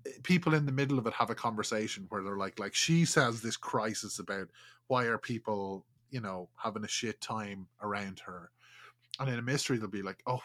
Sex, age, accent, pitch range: male, 20-39, Irish, 110-145 Hz